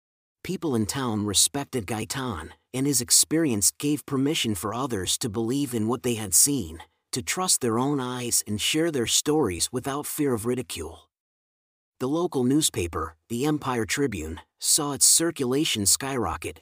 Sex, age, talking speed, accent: male, 40-59, 150 wpm, American